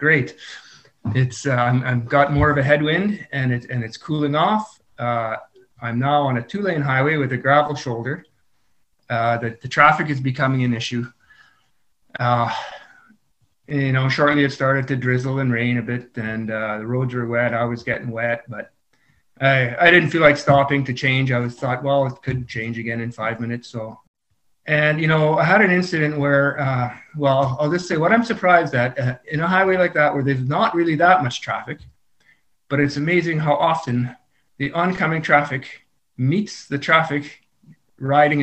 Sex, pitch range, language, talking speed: male, 120-150 Hz, English, 185 wpm